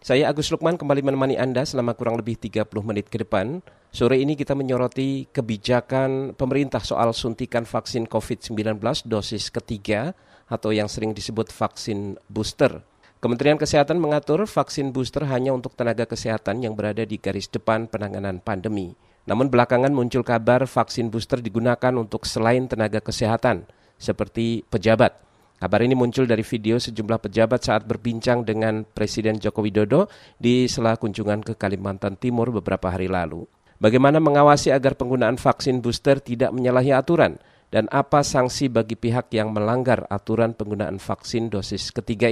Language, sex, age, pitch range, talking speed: Indonesian, male, 40-59, 110-135 Hz, 145 wpm